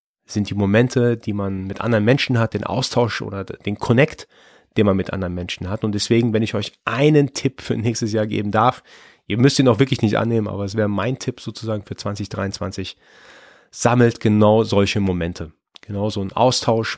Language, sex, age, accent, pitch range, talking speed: German, male, 30-49, German, 105-120 Hz, 195 wpm